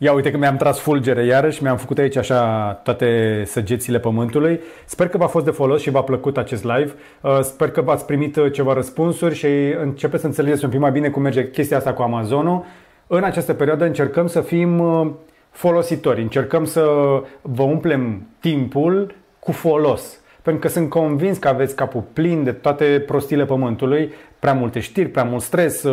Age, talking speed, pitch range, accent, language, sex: 30-49, 180 wpm, 135-165 Hz, native, Romanian, male